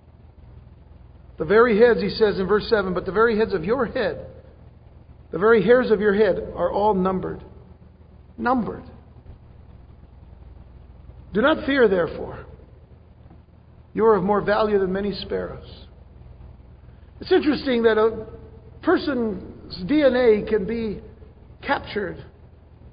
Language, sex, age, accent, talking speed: English, male, 50-69, American, 120 wpm